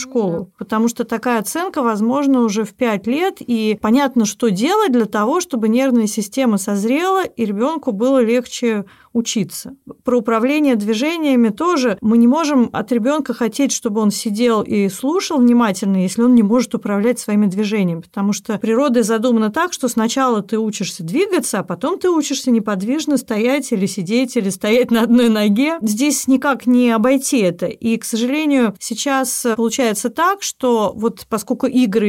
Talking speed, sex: 160 wpm, female